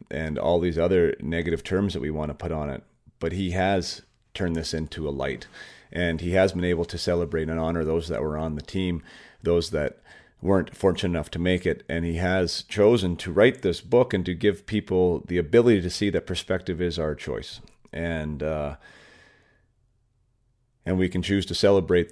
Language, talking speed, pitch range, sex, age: English, 200 wpm, 80-100 Hz, male, 40-59